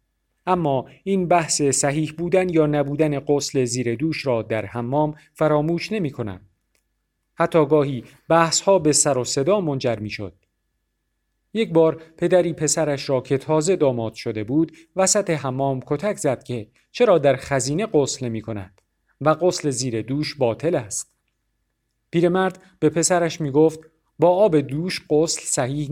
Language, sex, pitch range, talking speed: Persian, male, 120-170 Hz, 150 wpm